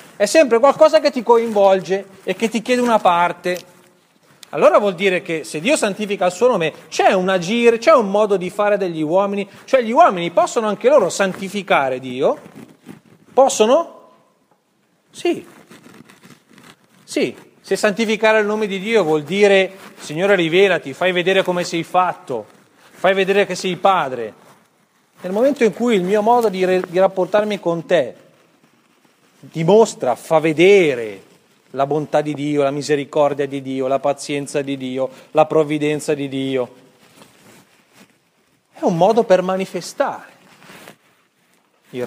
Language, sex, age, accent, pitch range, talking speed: Italian, male, 40-59, native, 160-225 Hz, 145 wpm